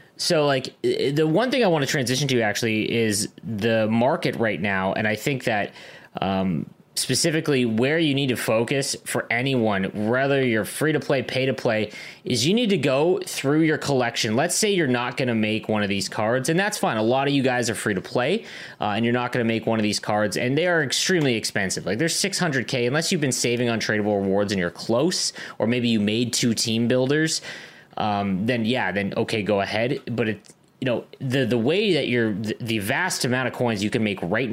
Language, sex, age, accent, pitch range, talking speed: English, male, 20-39, American, 110-145 Hz, 225 wpm